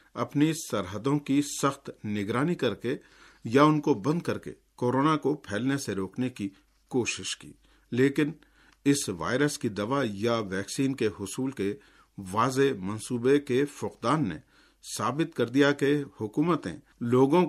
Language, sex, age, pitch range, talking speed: Urdu, male, 50-69, 115-145 Hz, 145 wpm